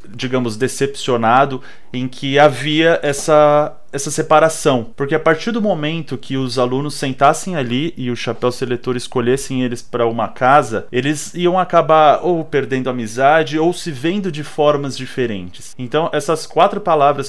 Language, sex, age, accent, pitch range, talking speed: Portuguese, male, 30-49, Brazilian, 130-170 Hz, 150 wpm